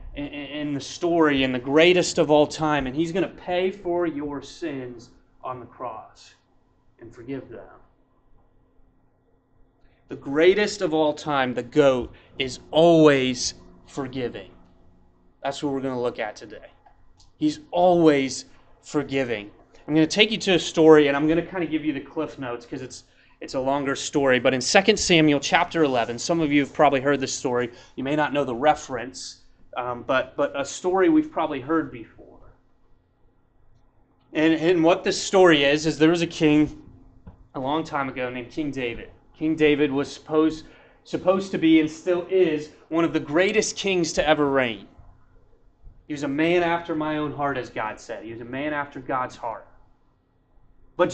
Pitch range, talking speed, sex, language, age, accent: 135-175 Hz, 180 wpm, male, English, 30-49, American